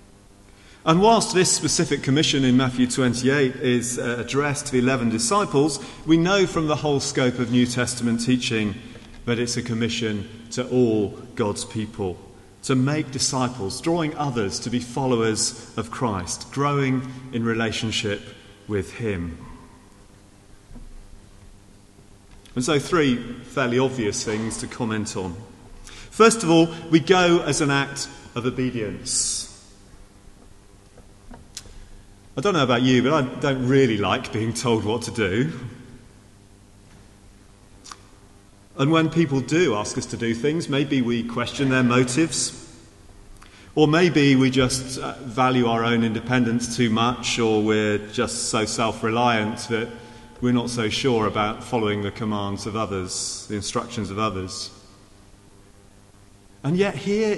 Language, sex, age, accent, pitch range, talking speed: English, male, 30-49, British, 100-130 Hz, 135 wpm